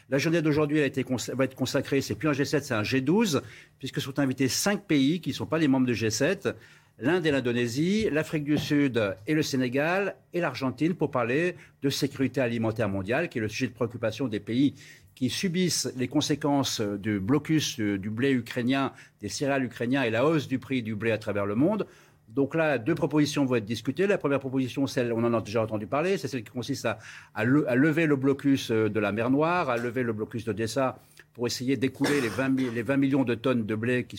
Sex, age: male, 60-79